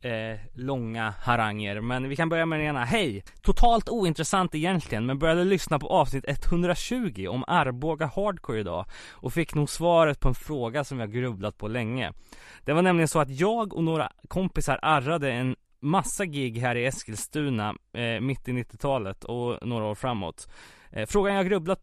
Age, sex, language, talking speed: 20-39, male, Swedish, 175 wpm